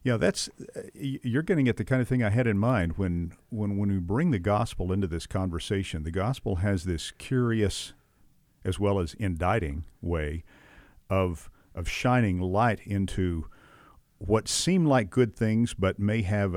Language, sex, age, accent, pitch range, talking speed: English, male, 50-69, American, 90-110 Hz, 165 wpm